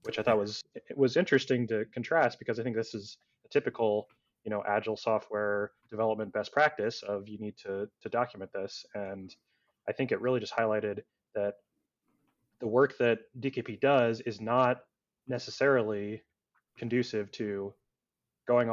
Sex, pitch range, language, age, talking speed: male, 105-120 Hz, English, 20-39, 155 wpm